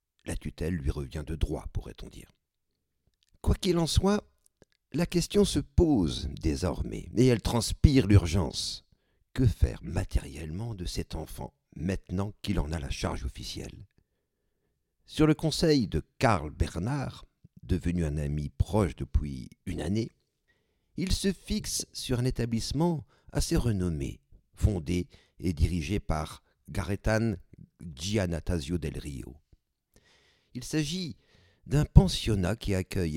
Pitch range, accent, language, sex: 80-120 Hz, French, French, male